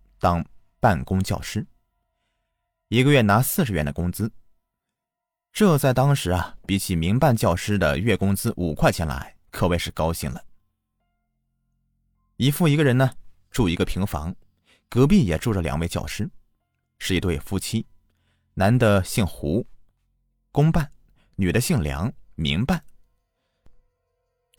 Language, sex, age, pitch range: Chinese, male, 20-39, 85-120 Hz